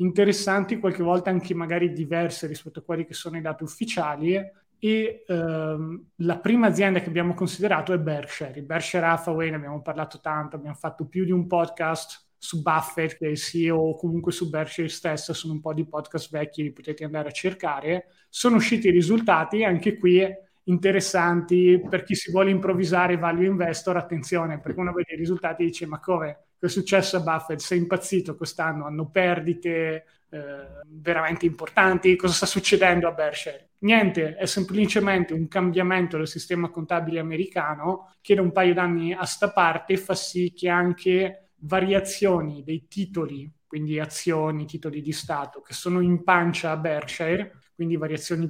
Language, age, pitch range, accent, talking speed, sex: Italian, 20-39, 160-185 Hz, native, 165 wpm, male